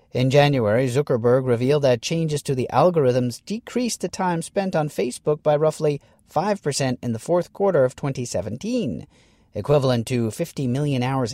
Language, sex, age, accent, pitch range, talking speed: English, male, 40-59, American, 125-165 Hz, 155 wpm